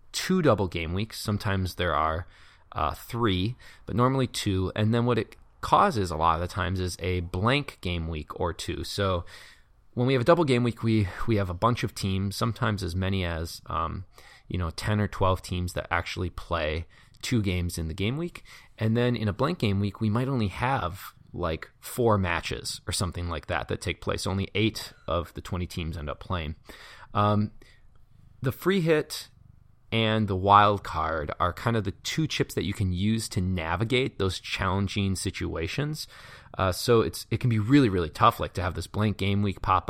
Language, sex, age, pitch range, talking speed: English, male, 20-39, 90-115 Hz, 200 wpm